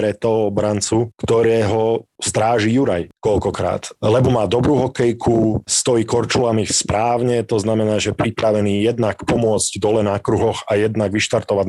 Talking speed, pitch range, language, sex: 135 wpm, 105-130 Hz, Slovak, male